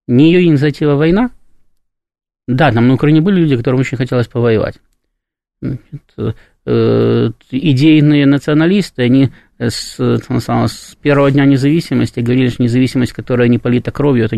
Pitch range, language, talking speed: 110-140 Hz, Russian, 135 wpm